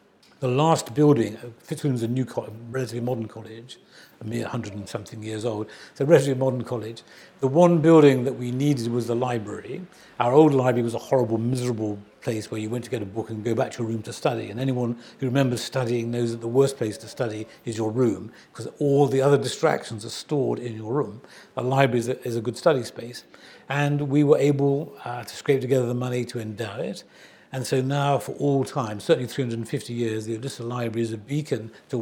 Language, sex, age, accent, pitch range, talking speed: English, male, 60-79, British, 115-145 Hz, 220 wpm